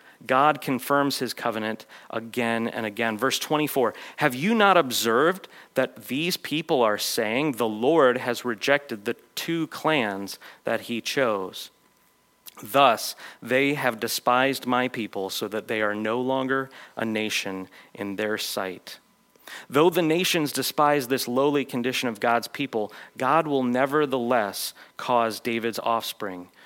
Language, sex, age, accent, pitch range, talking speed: English, male, 30-49, American, 110-130 Hz, 135 wpm